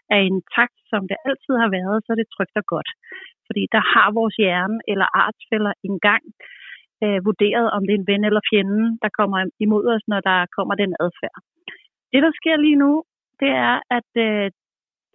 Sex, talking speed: female, 190 wpm